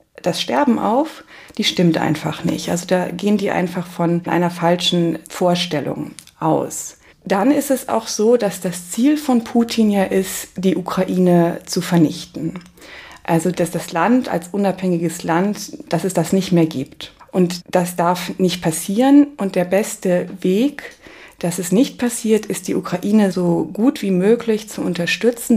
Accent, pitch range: German, 180-235 Hz